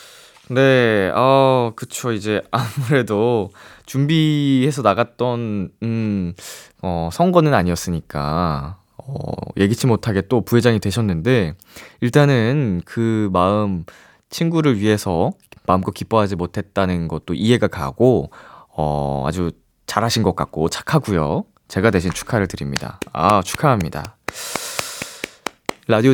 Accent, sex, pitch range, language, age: native, male, 95-165 Hz, Korean, 20-39